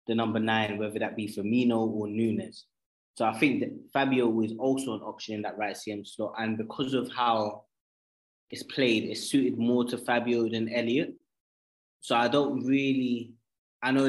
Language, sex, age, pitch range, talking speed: English, male, 20-39, 105-120 Hz, 180 wpm